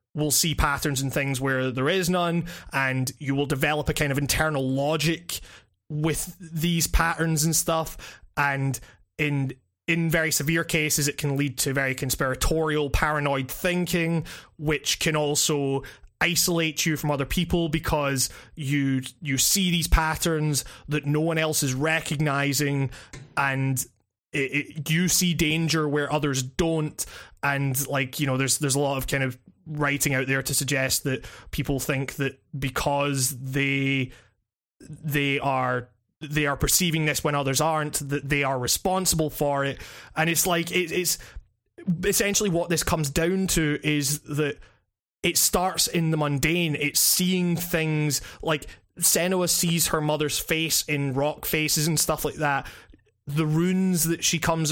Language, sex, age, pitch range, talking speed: English, male, 20-39, 135-165 Hz, 155 wpm